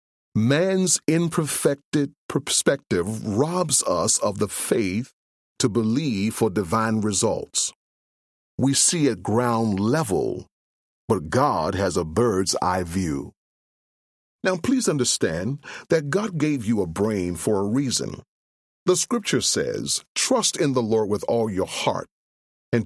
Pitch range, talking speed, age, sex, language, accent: 100-145 Hz, 130 wpm, 40-59, male, English, American